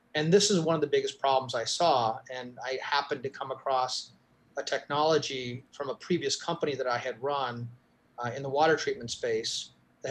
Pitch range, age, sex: 130-160 Hz, 30-49, male